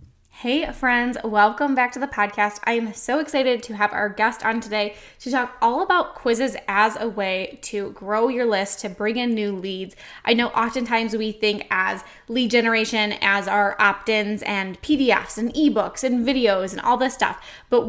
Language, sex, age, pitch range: English, female, 10-29, 210-250 Hz